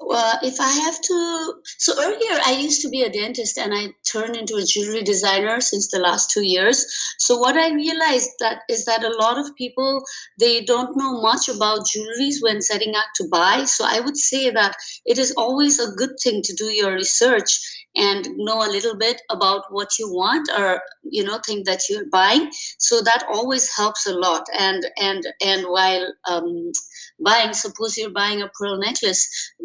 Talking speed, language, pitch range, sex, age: 195 wpm, English, 190-245 Hz, female, 30-49